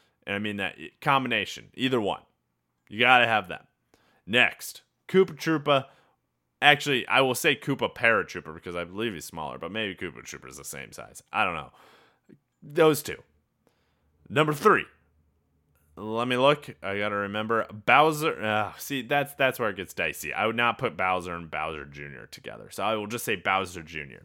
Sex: male